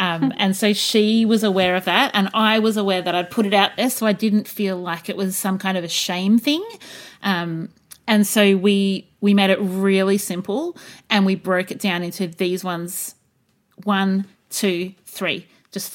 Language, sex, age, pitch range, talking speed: English, female, 30-49, 180-215 Hz, 195 wpm